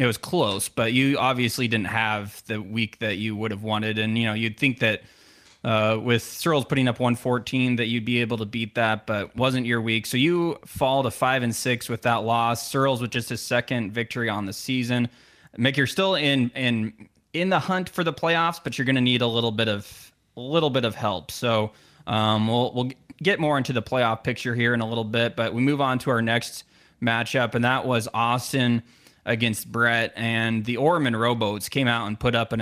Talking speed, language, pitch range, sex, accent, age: 225 wpm, English, 110-130 Hz, male, American, 20-39